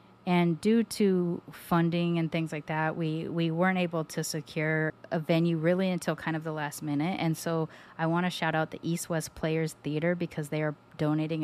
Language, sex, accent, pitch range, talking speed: English, female, American, 150-170 Hz, 200 wpm